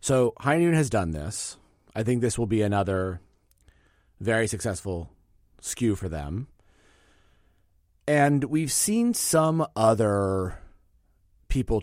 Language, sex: English, male